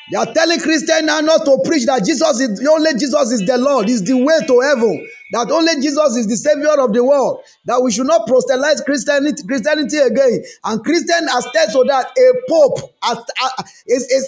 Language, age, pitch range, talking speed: English, 30-49, 240-300 Hz, 190 wpm